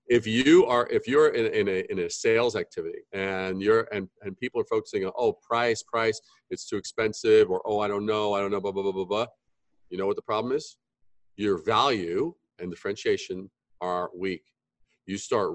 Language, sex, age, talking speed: English, male, 40-59, 210 wpm